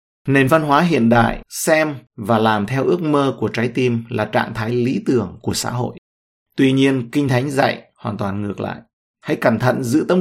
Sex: male